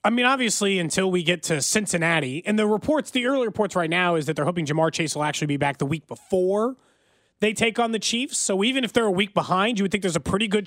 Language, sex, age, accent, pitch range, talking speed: English, male, 30-49, American, 160-240 Hz, 270 wpm